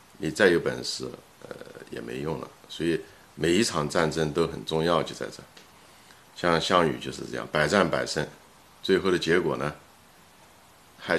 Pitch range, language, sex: 80-100 Hz, Chinese, male